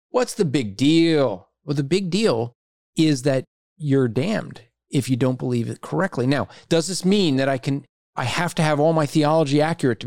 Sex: male